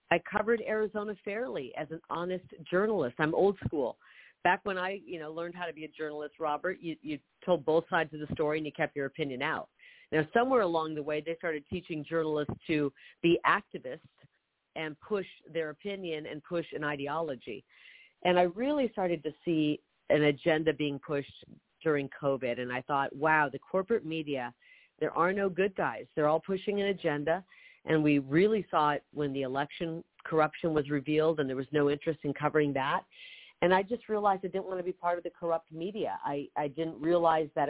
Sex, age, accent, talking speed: female, 40-59, American, 195 wpm